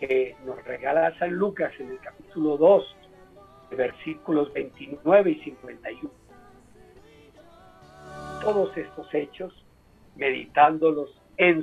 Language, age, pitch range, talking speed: Spanish, 50-69, 150-195 Hz, 95 wpm